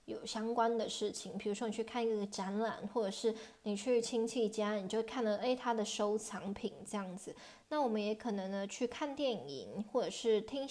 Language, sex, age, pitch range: Chinese, female, 20-39, 200-235 Hz